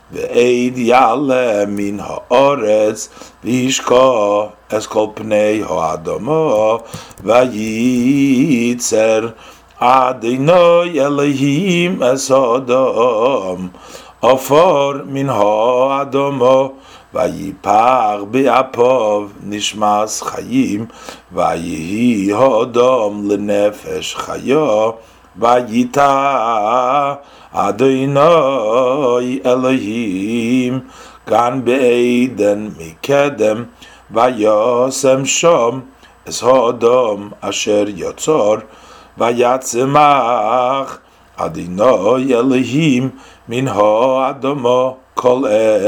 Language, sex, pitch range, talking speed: English, male, 110-135 Hz, 55 wpm